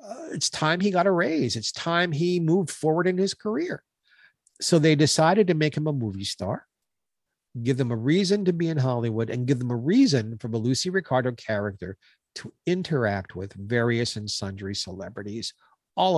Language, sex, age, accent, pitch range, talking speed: English, male, 50-69, American, 110-155 Hz, 185 wpm